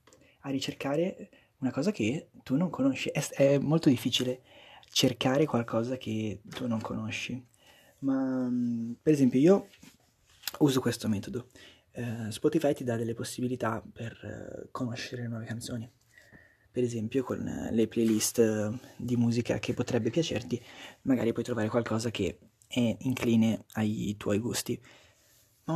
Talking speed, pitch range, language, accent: 135 wpm, 110-135 Hz, Italian, native